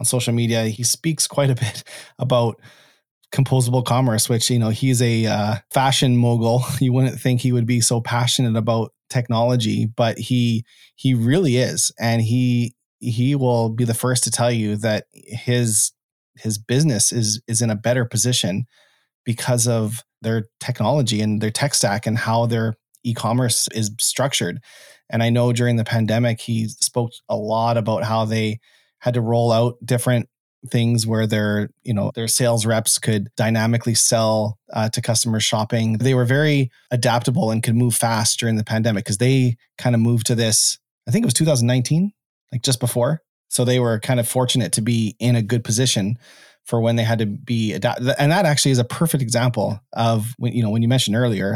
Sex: male